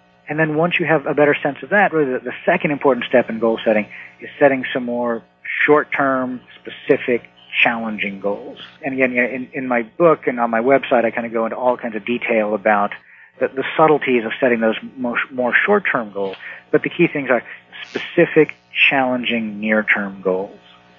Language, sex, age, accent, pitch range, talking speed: English, male, 40-59, American, 110-140 Hz, 175 wpm